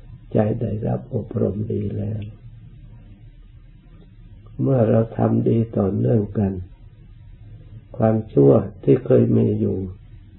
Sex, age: male, 60-79